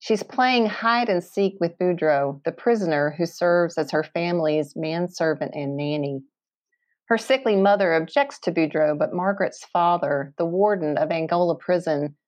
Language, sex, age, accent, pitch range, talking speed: English, female, 40-59, American, 155-200 Hz, 140 wpm